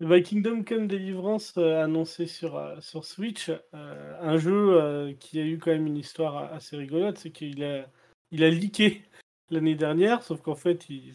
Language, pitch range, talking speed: French, 145-180 Hz, 190 wpm